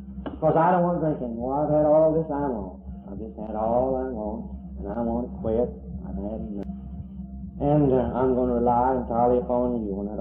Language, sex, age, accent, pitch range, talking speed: English, male, 60-79, American, 115-155 Hz, 230 wpm